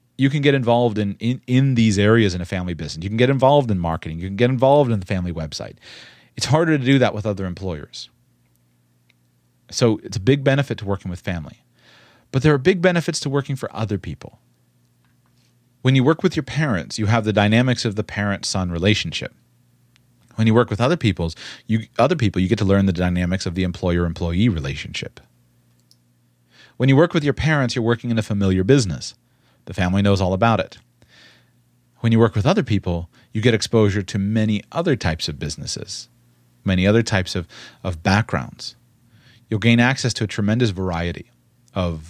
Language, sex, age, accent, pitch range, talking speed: English, male, 30-49, American, 90-125 Hz, 185 wpm